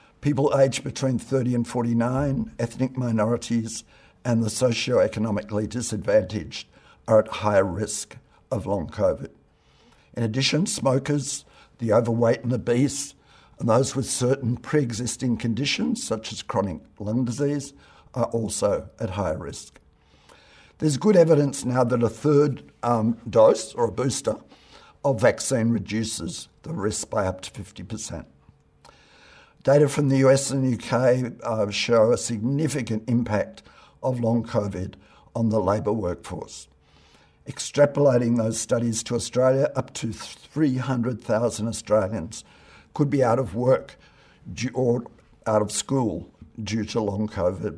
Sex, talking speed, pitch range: male, 130 wpm, 110-135 Hz